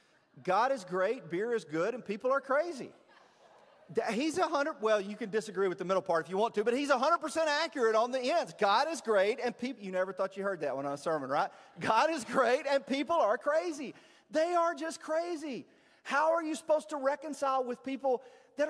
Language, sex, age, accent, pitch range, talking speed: English, male, 40-59, American, 215-290 Hz, 215 wpm